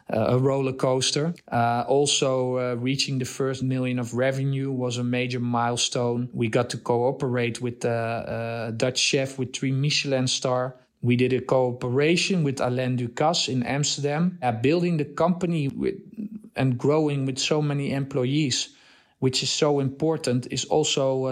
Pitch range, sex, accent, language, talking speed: 120-140 Hz, male, Dutch, English, 160 wpm